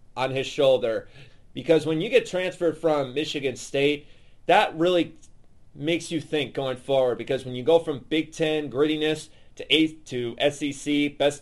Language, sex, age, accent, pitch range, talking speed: English, male, 30-49, American, 135-180 Hz, 165 wpm